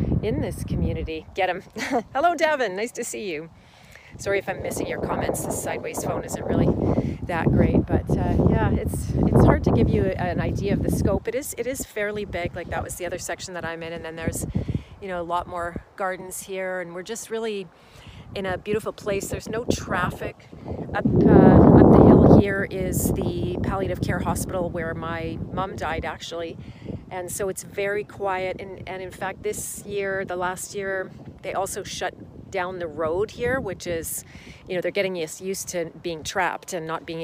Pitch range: 175-205 Hz